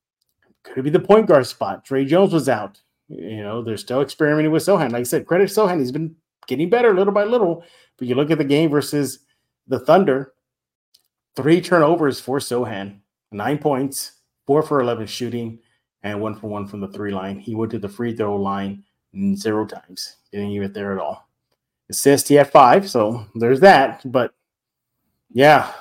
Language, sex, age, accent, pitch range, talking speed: English, male, 30-49, American, 120-165 Hz, 190 wpm